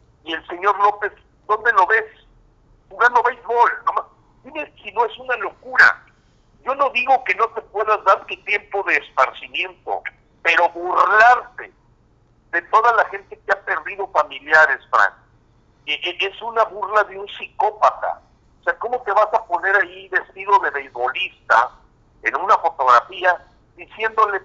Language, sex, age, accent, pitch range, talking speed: Spanish, male, 50-69, Mexican, 175-240 Hz, 145 wpm